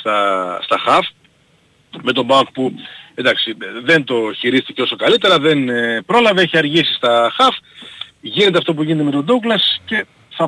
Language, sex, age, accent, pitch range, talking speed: Greek, male, 40-59, native, 130-175 Hz, 165 wpm